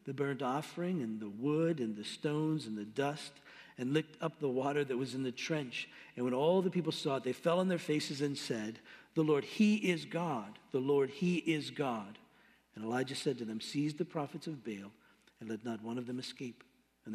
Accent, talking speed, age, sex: American, 225 wpm, 60-79, male